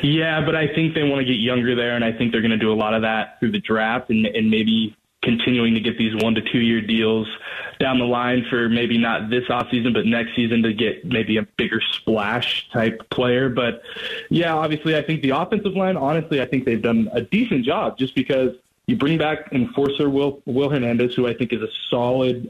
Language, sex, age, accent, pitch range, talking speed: English, male, 20-39, American, 115-140 Hz, 225 wpm